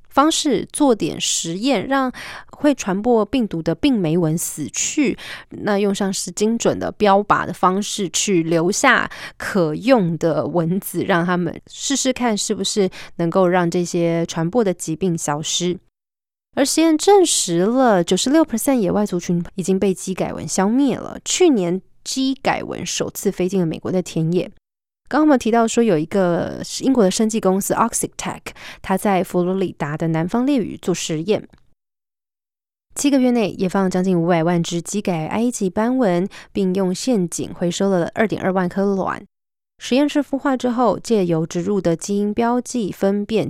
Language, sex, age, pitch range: Chinese, female, 20-39, 175-230 Hz